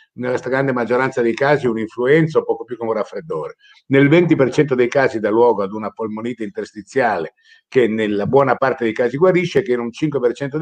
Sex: male